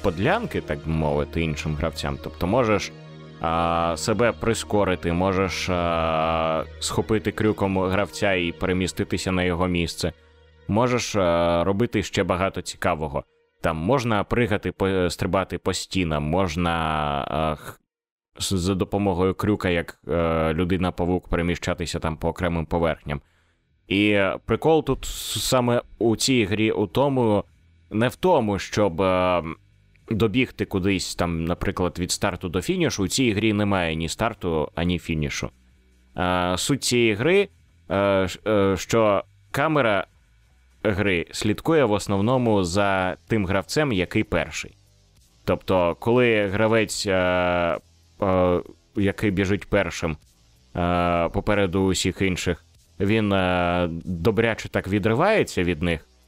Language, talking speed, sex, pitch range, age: Ukrainian, 120 wpm, male, 85-105 Hz, 20-39